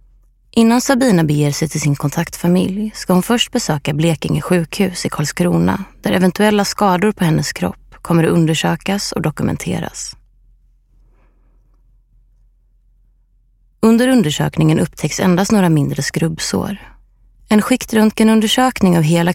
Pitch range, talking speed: 125-200 Hz, 115 wpm